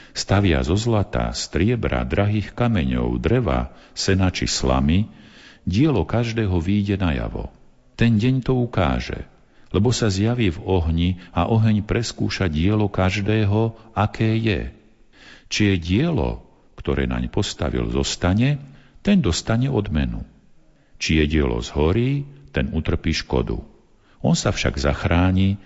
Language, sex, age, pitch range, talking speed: Slovak, male, 50-69, 70-110 Hz, 120 wpm